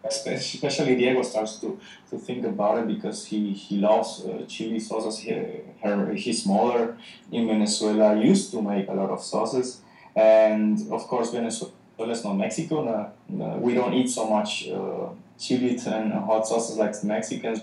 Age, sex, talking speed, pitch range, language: 20-39, male, 155 wpm, 105-130 Hz, English